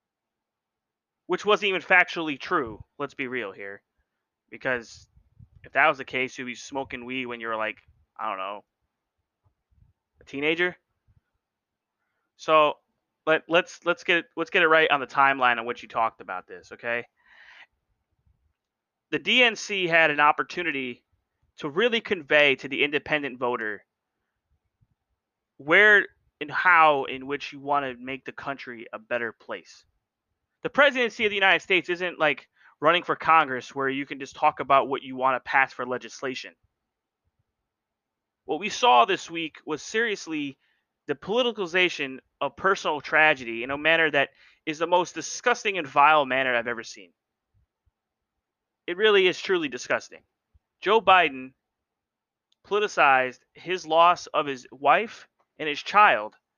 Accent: American